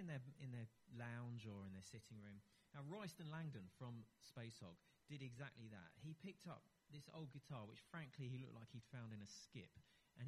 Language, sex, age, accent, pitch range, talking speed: English, male, 30-49, British, 110-145 Hz, 200 wpm